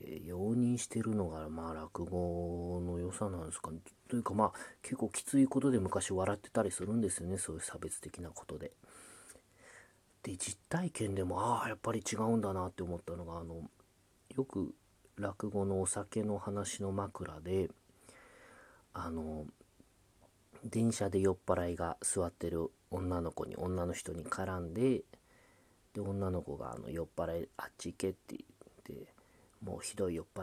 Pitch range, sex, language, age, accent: 85-105 Hz, male, Japanese, 40-59, native